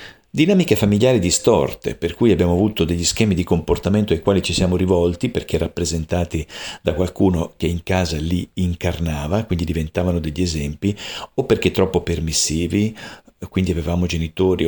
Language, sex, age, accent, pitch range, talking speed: Italian, male, 50-69, native, 80-95 Hz, 145 wpm